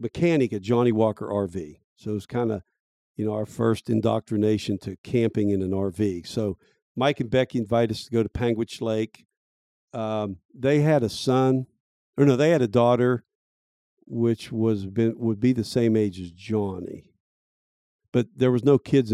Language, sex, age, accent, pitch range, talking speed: English, male, 50-69, American, 105-125 Hz, 180 wpm